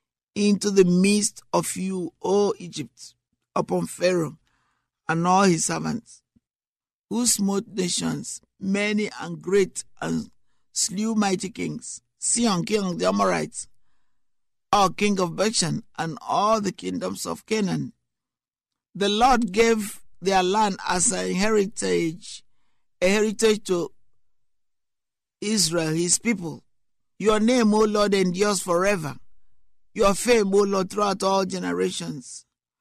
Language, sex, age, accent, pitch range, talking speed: English, male, 60-79, Nigerian, 175-215 Hz, 120 wpm